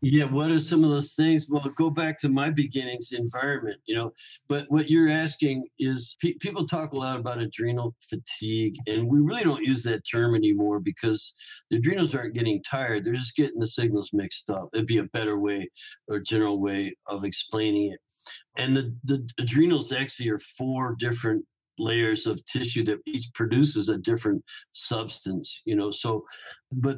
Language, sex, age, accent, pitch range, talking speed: English, male, 60-79, American, 110-145 Hz, 180 wpm